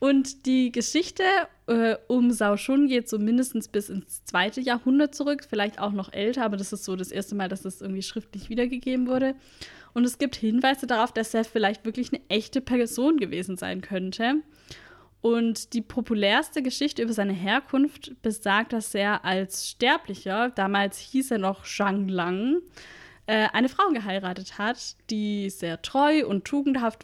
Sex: female